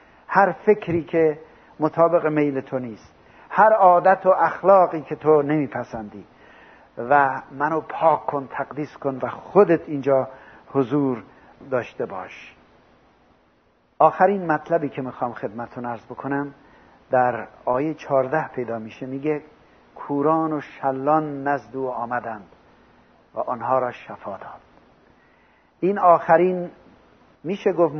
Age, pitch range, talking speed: 50-69, 125-155 Hz, 115 wpm